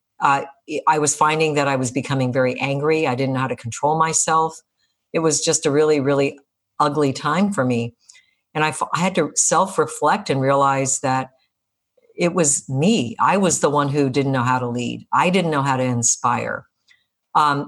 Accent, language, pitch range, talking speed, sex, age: American, English, 135-160 Hz, 195 wpm, female, 50-69